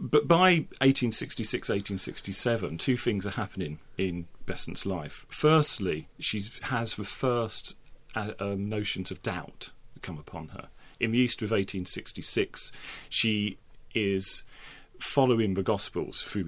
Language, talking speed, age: English, 125 wpm, 40-59